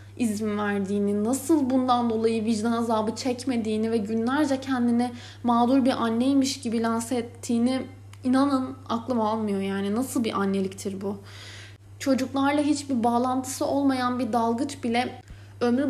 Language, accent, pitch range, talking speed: Turkish, native, 215-270 Hz, 125 wpm